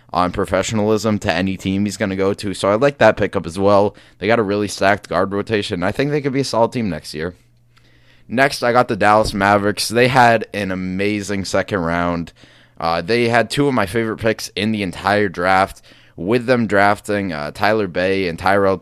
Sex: male